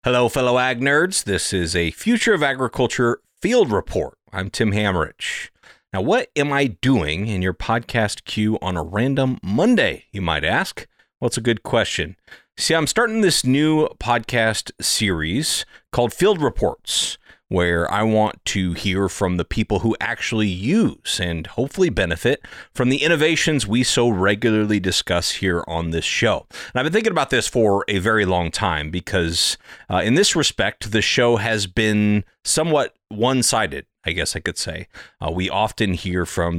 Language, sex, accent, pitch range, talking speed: English, male, American, 95-125 Hz, 170 wpm